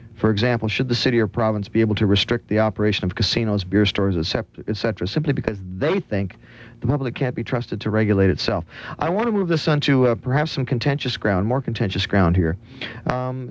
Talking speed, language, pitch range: 220 wpm, English, 100-130 Hz